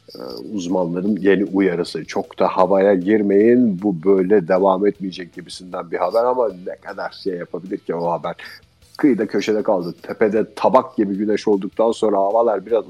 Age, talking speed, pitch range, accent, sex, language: 50-69, 155 wpm, 95-110 Hz, native, male, Turkish